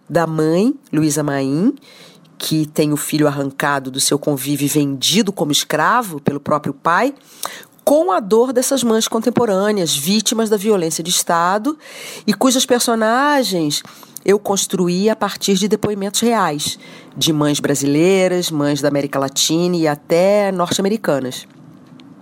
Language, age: Portuguese, 40-59